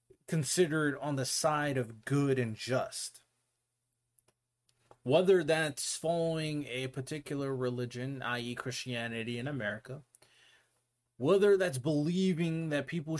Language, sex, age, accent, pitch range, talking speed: English, male, 30-49, American, 120-160 Hz, 105 wpm